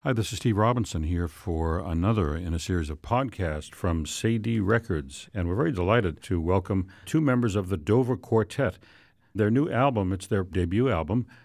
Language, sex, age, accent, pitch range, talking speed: English, male, 60-79, American, 85-115 Hz, 185 wpm